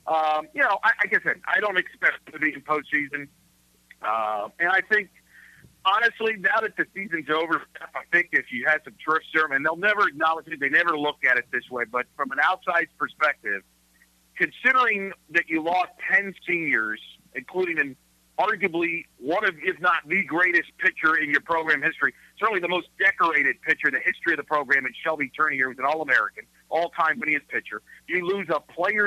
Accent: American